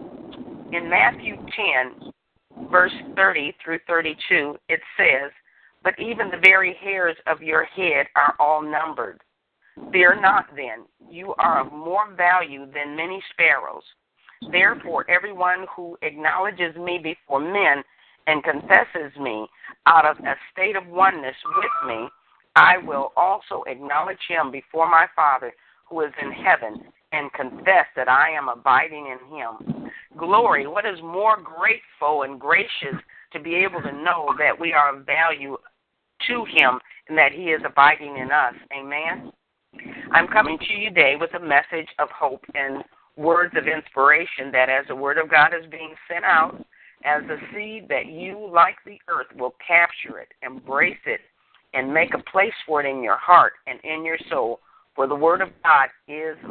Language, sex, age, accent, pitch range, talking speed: English, female, 50-69, American, 150-185 Hz, 160 wpm